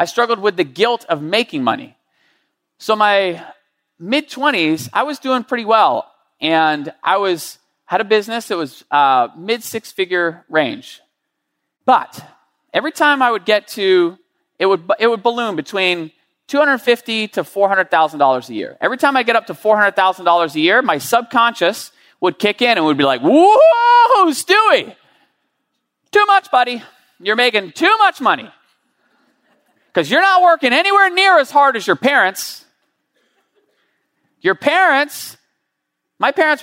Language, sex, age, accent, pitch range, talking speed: English, male, 30-49, American, 195-285 Hz, 145 wpm